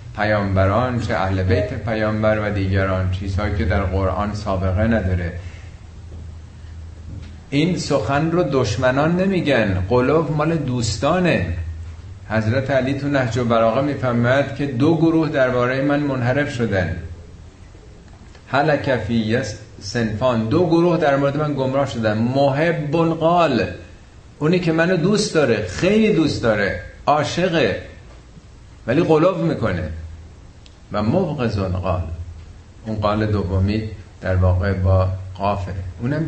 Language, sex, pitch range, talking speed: Persian, male, 95-130 Hz, 110 wpm